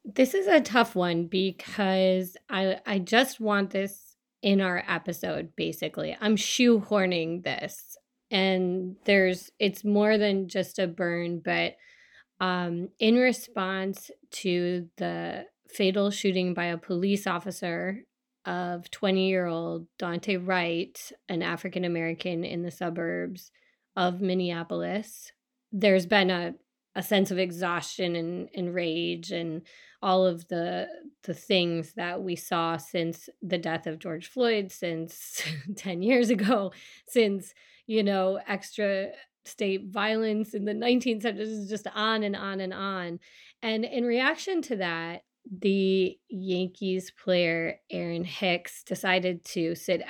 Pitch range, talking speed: 170-205 Hz, 130 wpm